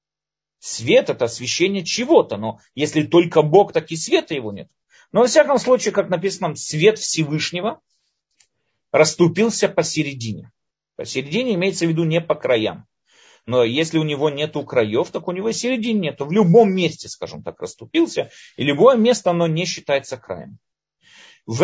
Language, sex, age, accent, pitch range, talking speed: Russian, male, 40-59, native, 130-210 Hz, 155 wpm